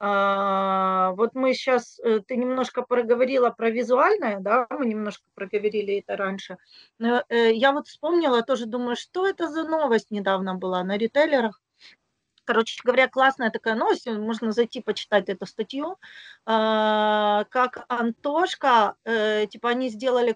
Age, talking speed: 30-49, 125 wpm